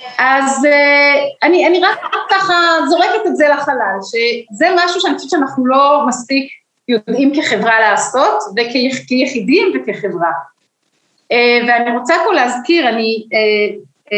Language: Hebrew